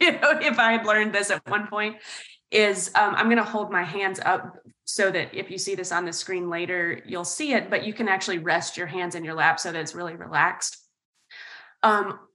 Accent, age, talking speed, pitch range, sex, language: American, 20-39, 225 wpm, 180-215 Hz, female, English